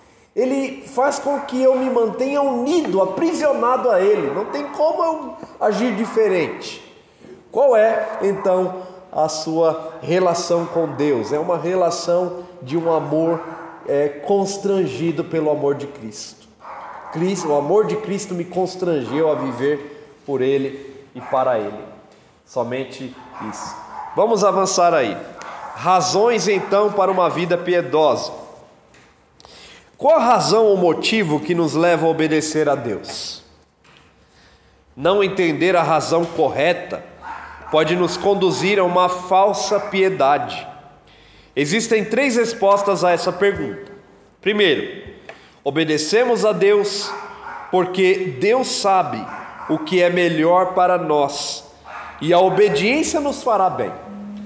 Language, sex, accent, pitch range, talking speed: Portuguese, male, Brazilian, 155-205 Hz, 120 wpm